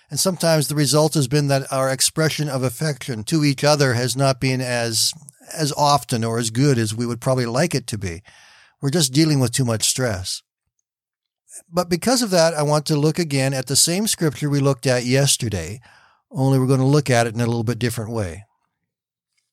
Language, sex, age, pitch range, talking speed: English, male, 50-69, 125-155 Hz, 210 wpm